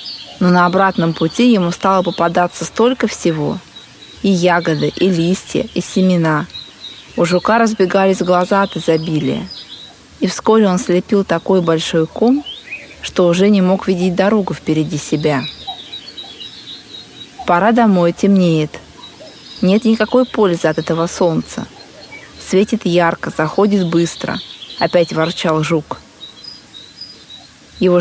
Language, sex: Russian, female